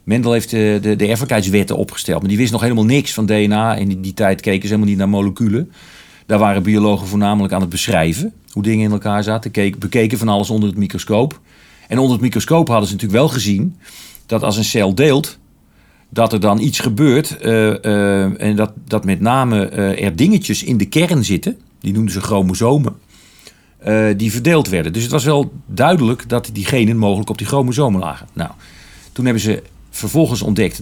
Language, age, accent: Dutch, 40-59, Dutch